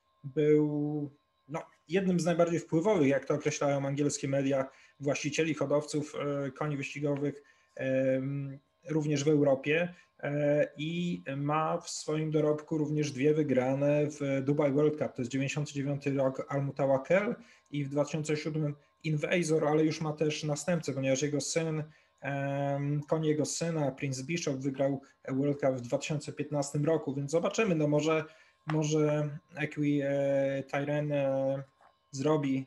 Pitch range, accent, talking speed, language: 140-160 Hz, native, 130 wpm, Polish